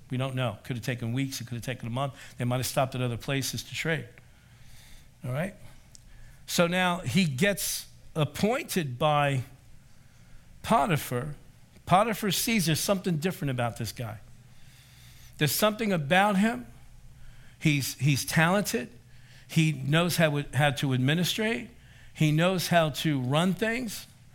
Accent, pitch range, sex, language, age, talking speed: American, 125-175 Hz, male, English, 60-79, 145 wpm